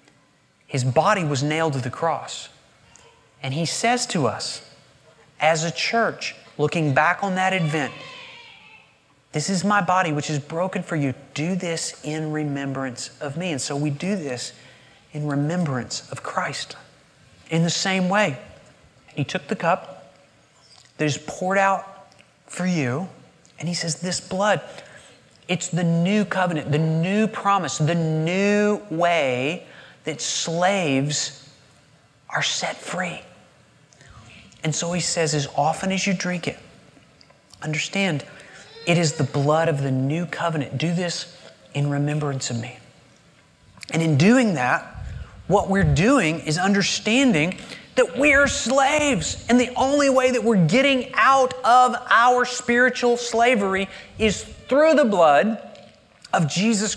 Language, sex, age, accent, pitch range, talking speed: English, male, 30-49, American, 150-200 Hz, 140 wpm